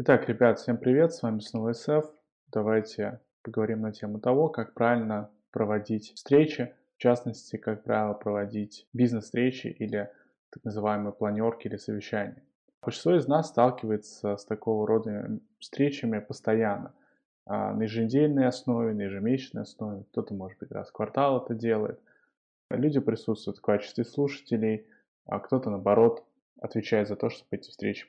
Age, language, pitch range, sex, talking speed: 20-39, Russian, 105-125 Hz, male, 140 wpm